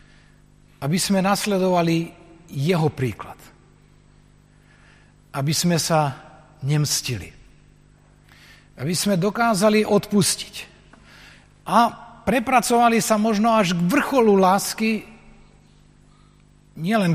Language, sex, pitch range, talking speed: Slovak, male, 145-195 Hz, 75 wpm